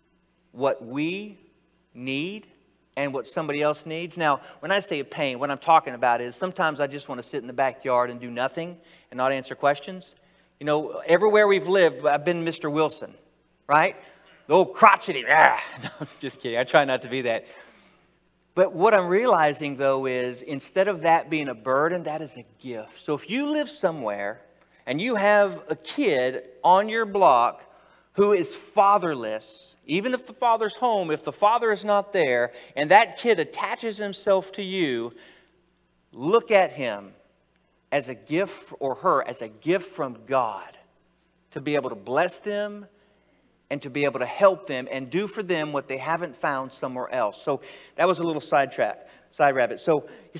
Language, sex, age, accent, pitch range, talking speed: English, male, 40-59, American, 140-200 Hz, 185 wpm